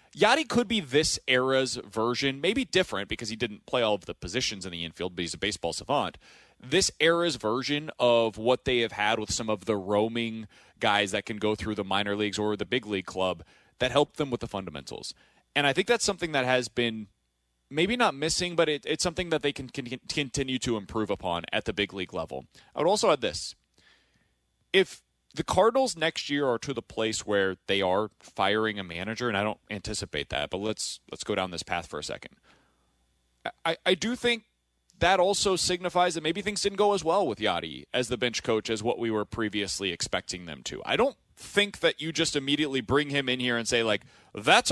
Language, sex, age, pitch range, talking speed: English, male, 30-49, 105-165 Hz, 215 wpm